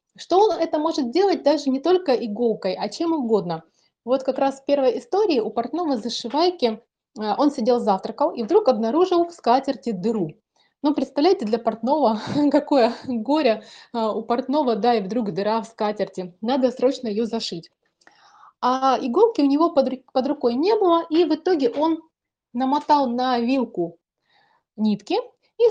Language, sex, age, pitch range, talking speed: Russian, female, 30-49, 225-295 Hz, 155 wpm